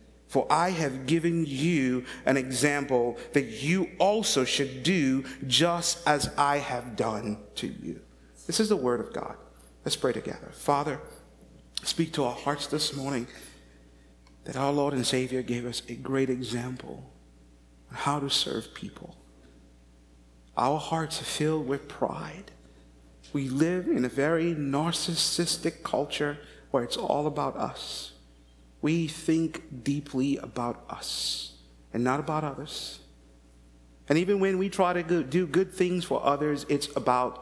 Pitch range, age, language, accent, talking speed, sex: 120-165 Hz, 50-69, English, American, 145 wpm, male